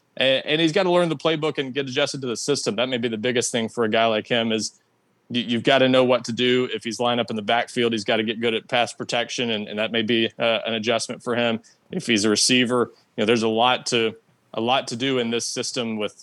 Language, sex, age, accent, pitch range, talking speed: English, male, 20-39, American, 110-125 Hz, 275 wpm